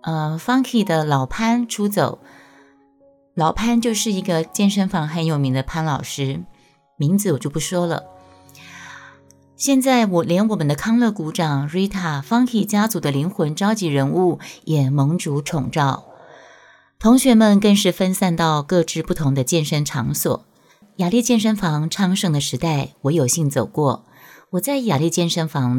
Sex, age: female, 20-39